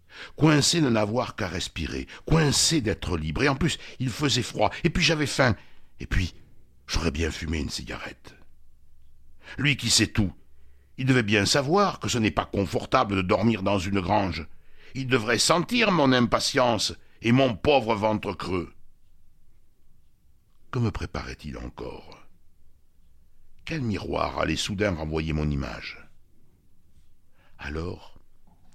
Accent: French